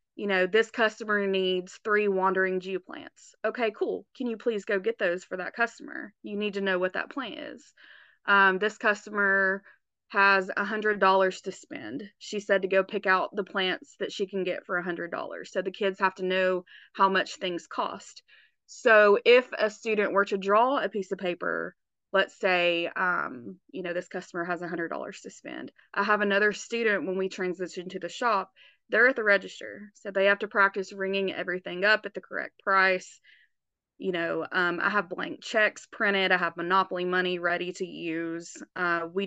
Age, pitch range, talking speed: 20-39, 185-210 Hz, 190 wpm